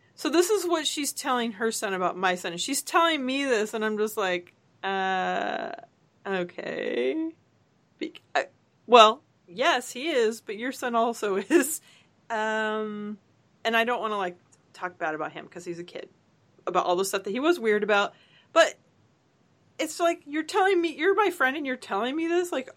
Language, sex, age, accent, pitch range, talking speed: English, female, 30-49, American, 200-295 Hz, 185 wpm